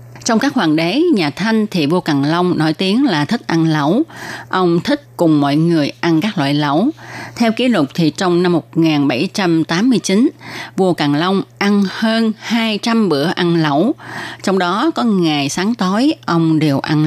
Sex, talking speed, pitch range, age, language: female, 175 wpm, 155-205 Hz, 20-39, Vietnamese